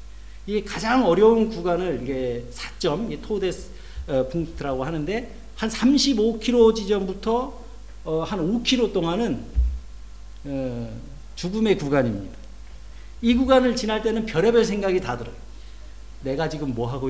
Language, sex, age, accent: Korean, male, 40-59, native